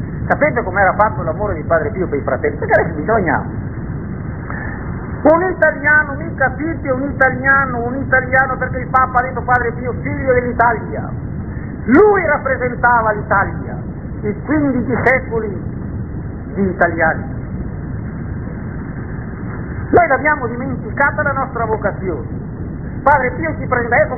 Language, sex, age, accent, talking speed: Italian, male, 50-69, native, 120 wpm